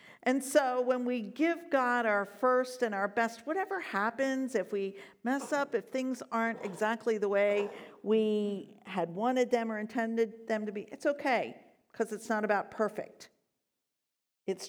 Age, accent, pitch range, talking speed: 50-69, American, 220-290 Hz, 165 wpm